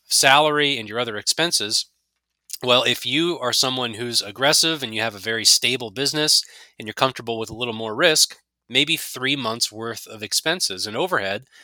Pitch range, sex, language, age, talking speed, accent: 110-140 Hz, male, English, 20-39, 180 wpm, American